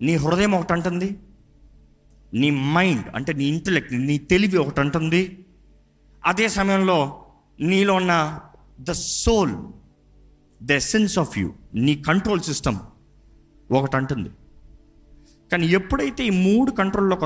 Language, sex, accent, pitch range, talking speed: Telugu, male, native, 115-175 Hz, 115 wpm